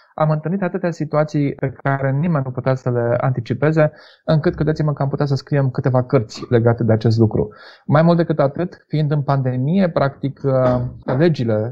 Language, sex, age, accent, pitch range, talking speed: Romanian, male, 30-49, native, 135-165 Hz, 175 wpm